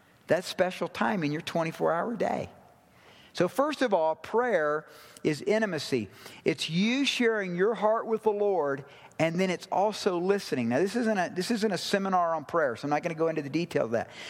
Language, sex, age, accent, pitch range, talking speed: English, male, 50-69, American, 170-235 Hz, 195 wpm